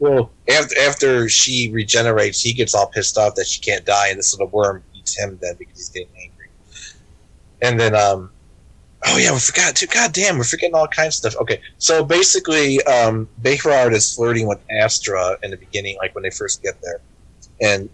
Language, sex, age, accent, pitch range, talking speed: English, male, 30-49, American, 95-115 Hz, 190 wpm